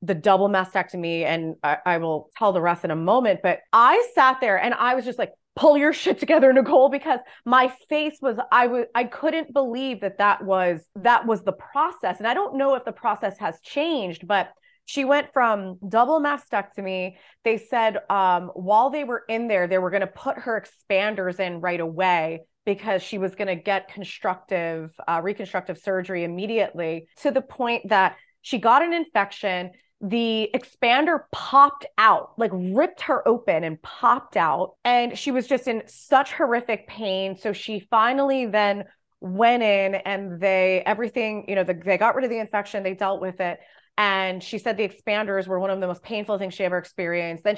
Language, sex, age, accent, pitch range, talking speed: English, female, 20-39, American, 185-245 Hz, 190 wpm